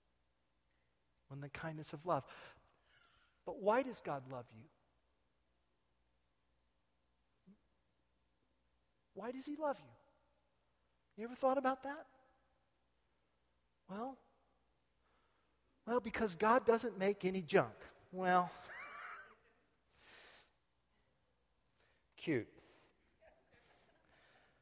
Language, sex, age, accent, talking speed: English, male, 40-59, American, 75 wpm